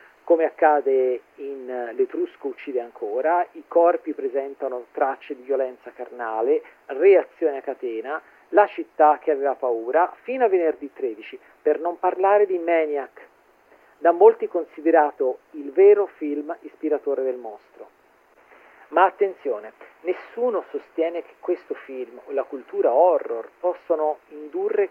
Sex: male